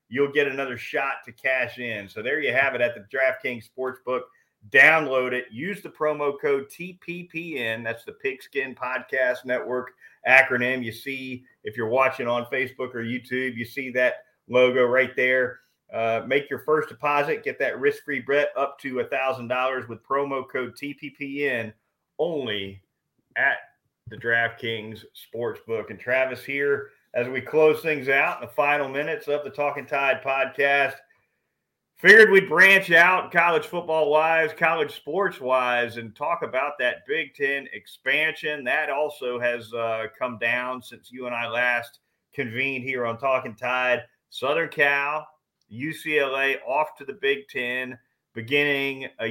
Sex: male